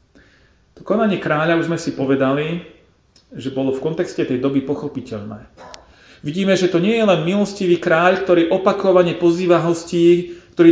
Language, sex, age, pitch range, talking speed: Slovak, male, 40-59, 130-170 Hz, 145 wpm